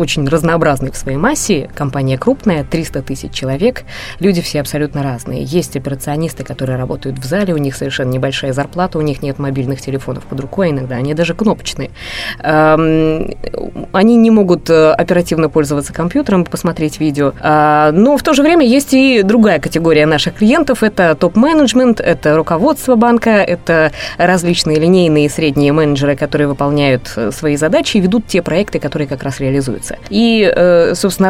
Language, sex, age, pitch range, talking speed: Russian, female, 20-39, 145-195 Hz, 155 wpm